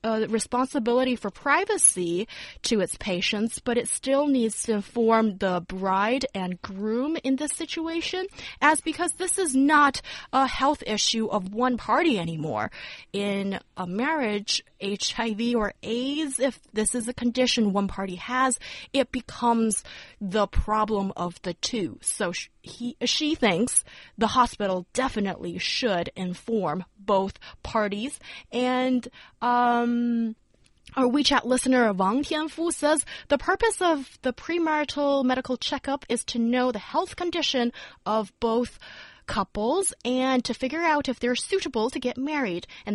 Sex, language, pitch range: female, Chinese, 205-275 Hz